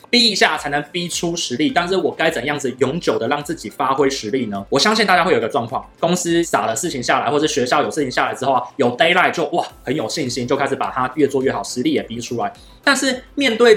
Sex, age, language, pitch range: male, 20-39, Chinese, 135-210 Hz